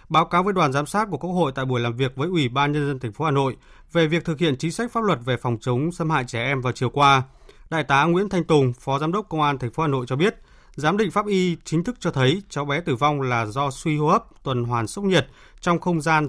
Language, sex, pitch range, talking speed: Vietnamese, male, 130-165 Hz, 295 wpm